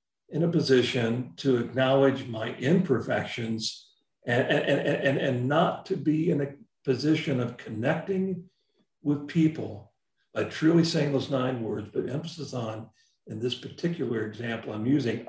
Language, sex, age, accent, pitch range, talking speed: English, male, 50-69, American, 125-160 Hz, 135 wpm